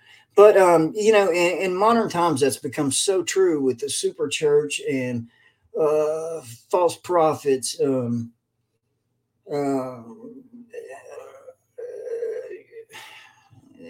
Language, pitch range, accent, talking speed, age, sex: English, 125-190 Hz, American, 95 wpm, 40-59, male